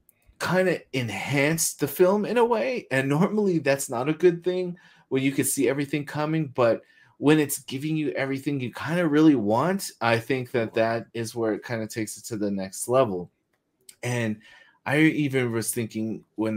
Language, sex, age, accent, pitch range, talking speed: English, male, 30-49, American, 100-130 Hz, 190 wpm